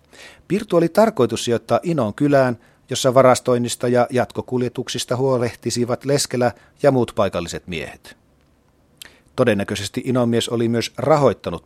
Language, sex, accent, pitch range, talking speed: Finnish, male, native, 110-135 Hz, 115 wpm